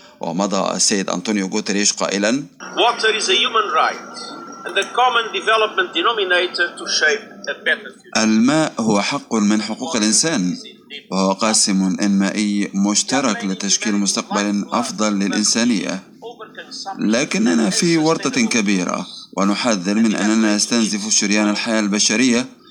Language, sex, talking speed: Arabic, male, 80 wpm